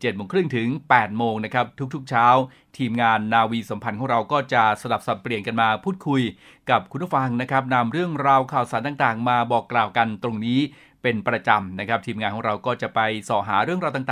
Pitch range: 115-145 Hz